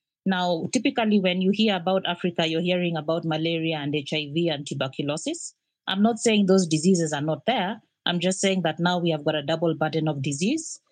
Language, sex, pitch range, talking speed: English, female, 160-200 Hz, 200 wpm